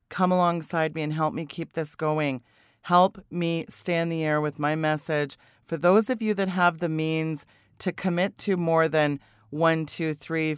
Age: 40-59